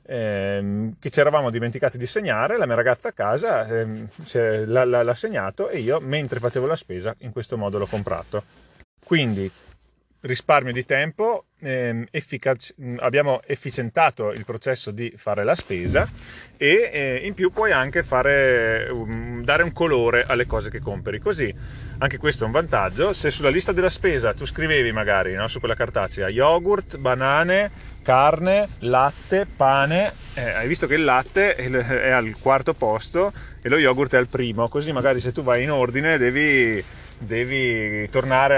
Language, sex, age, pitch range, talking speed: Italian, male, 30-49, 110-140 Hz, 150 wpm